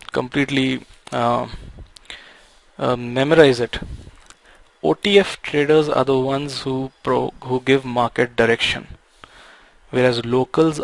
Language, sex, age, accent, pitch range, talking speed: Tamil, male, 20-39, native, 120-135 Hz, 100 wpm